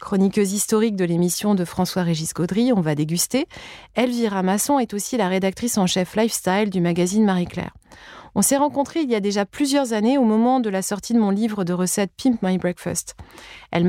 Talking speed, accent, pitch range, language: 195 wpm, French, 180-220 Hz, French